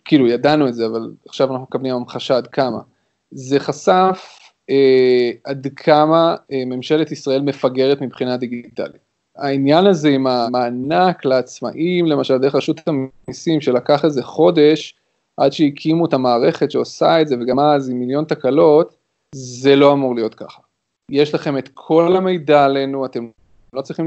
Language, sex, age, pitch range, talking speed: Hebrew, male, 20-39, 130-155 Hz, 150 wpm